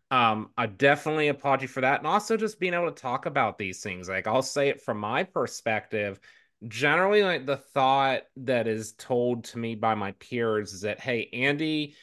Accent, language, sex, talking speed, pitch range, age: American, English, male, 195 wpm, 110-135 Hz, 30-49